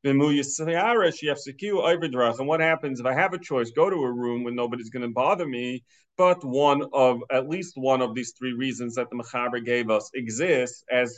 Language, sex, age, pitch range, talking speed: English, male, 40-59, 130-170 Hz, 190 wpm